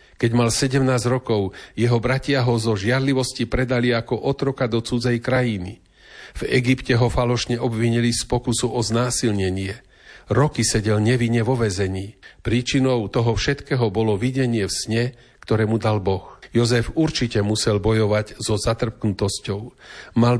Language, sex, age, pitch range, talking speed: Slovak, male, 40-59, 105-125 Hz, 140 wpm